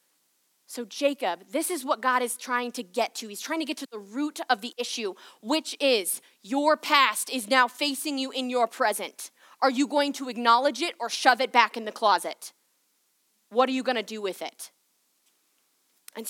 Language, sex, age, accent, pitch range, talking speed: English, female, 20-39, American, 180-260 Hz, 195 wpm